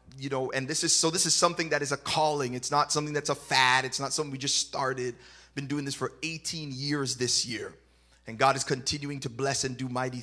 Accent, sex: American, male